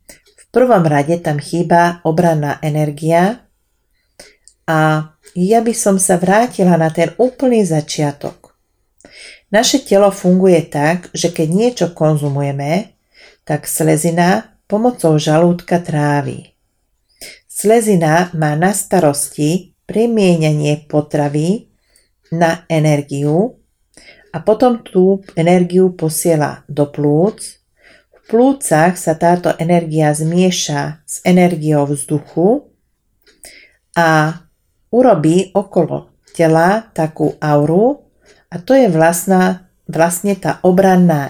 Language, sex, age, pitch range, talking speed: Slovak, female, 40-59, 155-190 Hz, 95 wpm